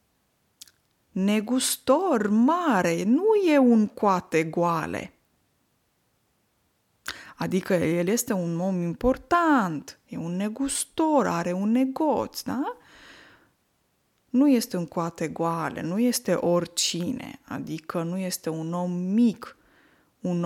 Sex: female